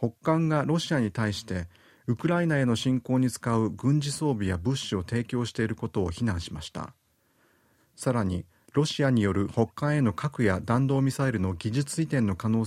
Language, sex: Japanese, male